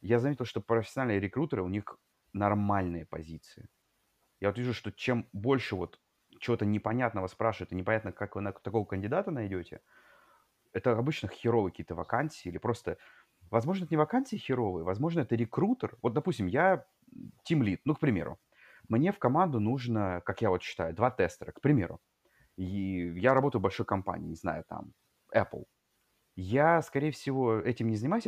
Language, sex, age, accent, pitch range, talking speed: Russian, male, 30-49, native, 100-145 Hz, 160 wpm